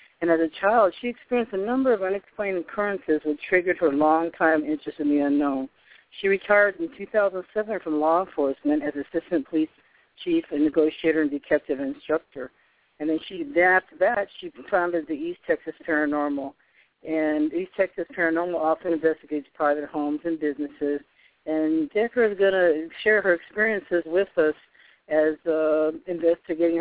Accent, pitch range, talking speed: American, 150-190 Hz, 155 wpm